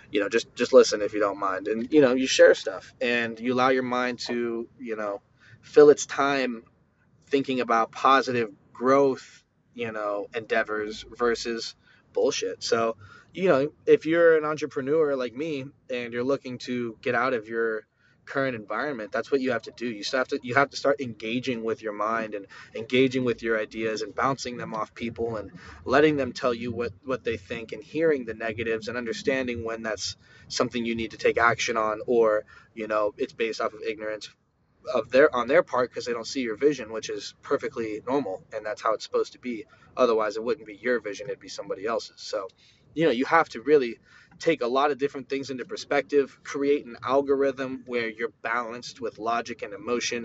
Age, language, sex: 20-39, English, male